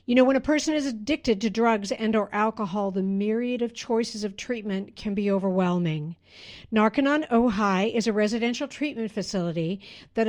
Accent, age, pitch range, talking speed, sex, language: American, 60-79, 190-250 Hz, 170 wpm, female, English